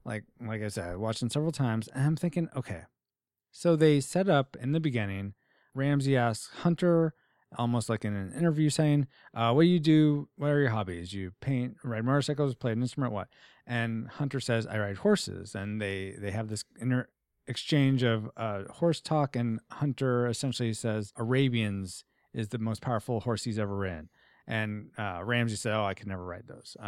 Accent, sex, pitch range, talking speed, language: American, male, 110-140 Hz, 190 wpm, English